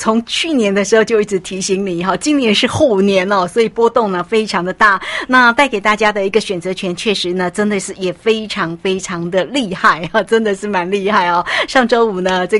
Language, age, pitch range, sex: Chinese, 50-69, 185-235 Hz, female